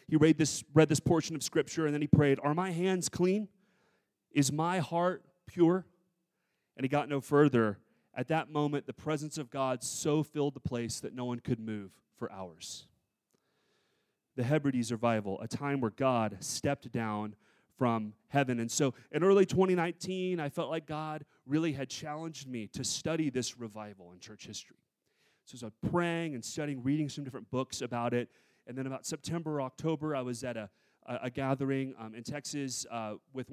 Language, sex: English, male